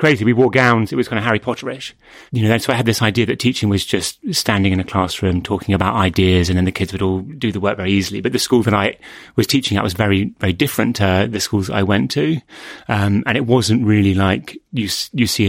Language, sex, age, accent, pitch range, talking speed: English, male, 30-49, British, 95-120 Hz, 255 wpm